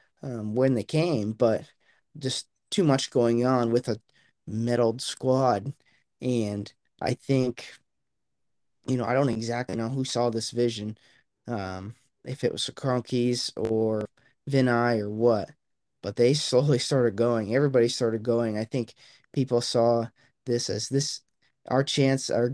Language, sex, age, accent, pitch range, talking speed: English, male, 20-39, American, 120-135 Hz, 145 wpm